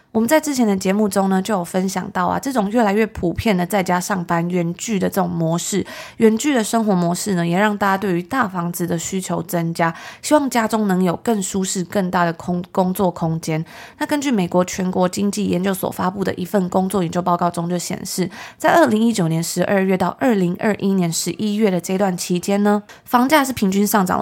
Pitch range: 175-210 Hz